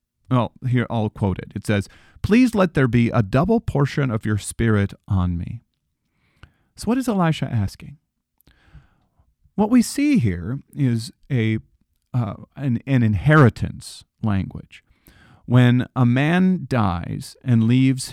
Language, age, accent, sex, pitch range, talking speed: English, 40-59, American, male, 100-135 Hz, 135 wpm